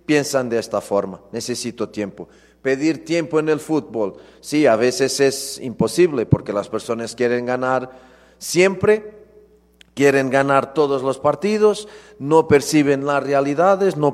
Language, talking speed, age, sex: Spanish, 135 wpm, 40-59, male